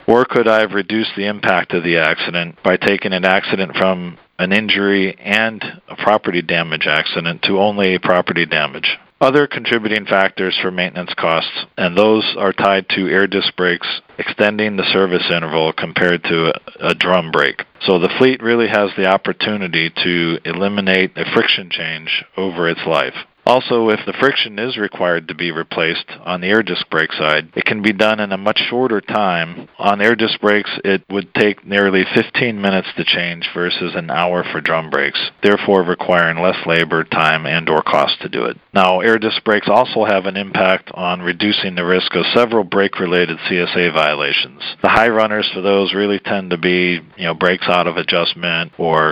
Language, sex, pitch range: English, male, 90-105 Hz